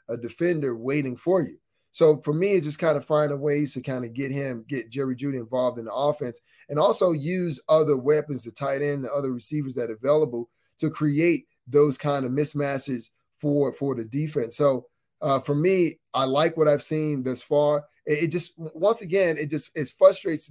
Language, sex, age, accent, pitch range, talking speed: English, male, 30-49, American, 135-165 Hz, 205 wpm